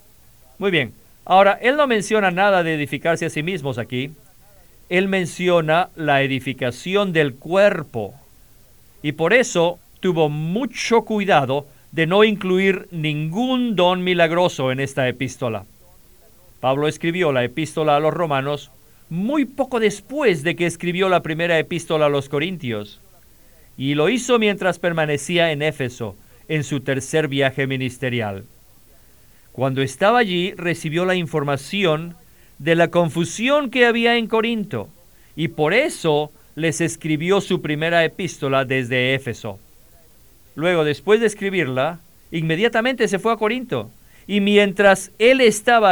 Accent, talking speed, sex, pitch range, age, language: Mexican, 130 wpm, male, 135-190 Hz, 50-69, Spanish